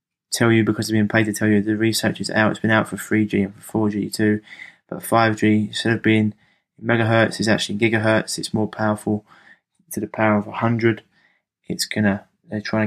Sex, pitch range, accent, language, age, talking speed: male, 105-110 Hz, British, English, 20-39, 200 wpm